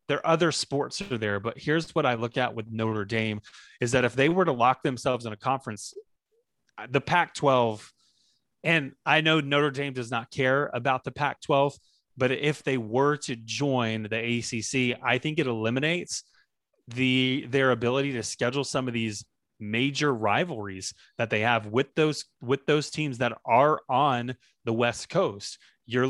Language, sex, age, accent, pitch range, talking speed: English, male, 30-49, American, 120-145 Hz, 180 wpm